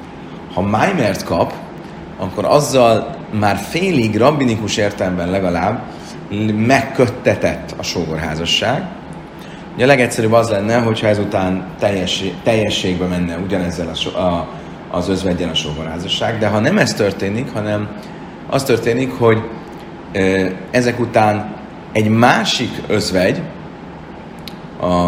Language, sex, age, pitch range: Hungarian, male, 30-49, 90-115 Hz